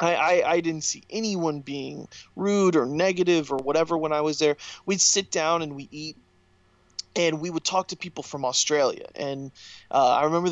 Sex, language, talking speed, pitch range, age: male, English, 190 wpm, 135-170 Hz, 30-49